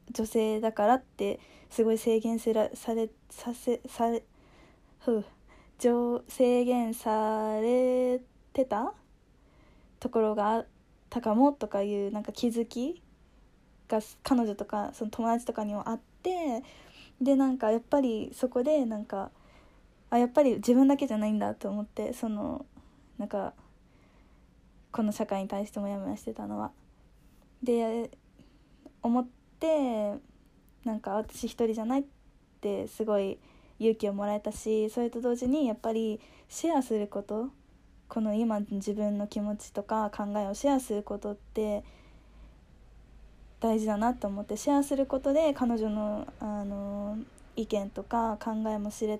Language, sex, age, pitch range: Japanese, female, 20-39, 210-250 Hz